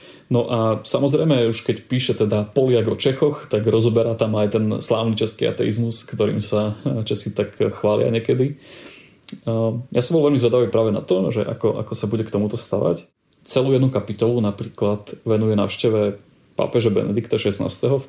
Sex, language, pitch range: male, Slovak, 105-120 Hz